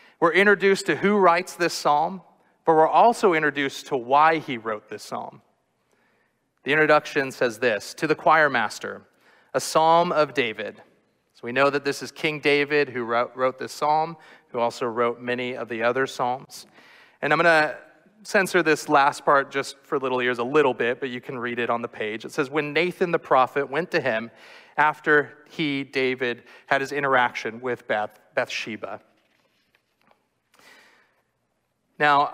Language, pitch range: English, 130-165 Hz